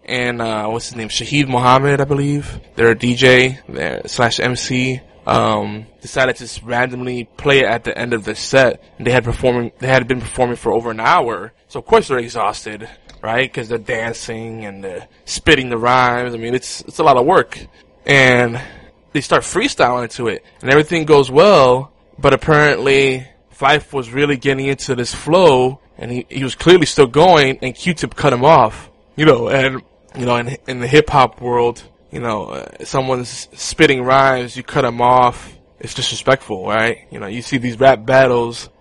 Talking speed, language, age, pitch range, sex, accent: 190 wpm, English, 20-39, 115-135 Hz, male, American